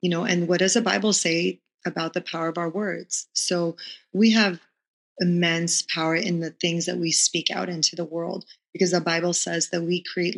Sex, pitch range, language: female, 165-185 Hz, English